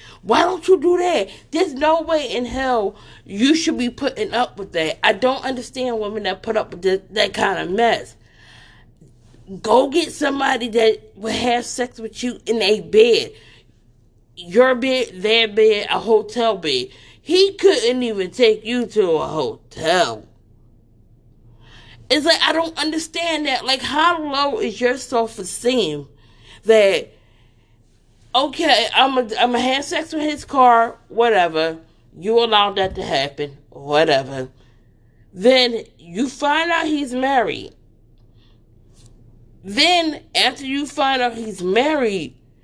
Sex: female